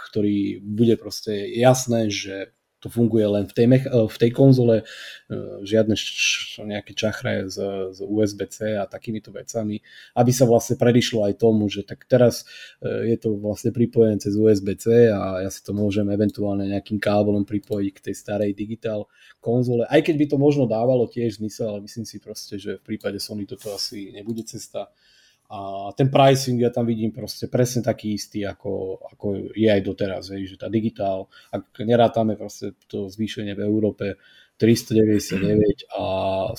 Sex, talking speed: male, 160 wpm